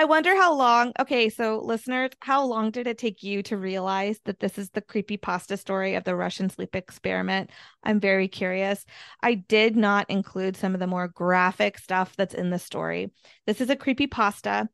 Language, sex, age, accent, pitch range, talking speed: English, female, 20-39, American, 180-225 Hz, 190 wpm